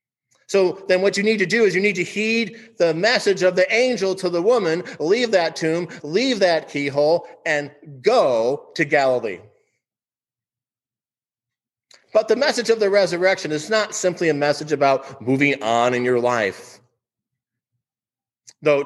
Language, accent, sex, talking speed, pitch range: English, American, male, 155 wpm, 130-195 Hz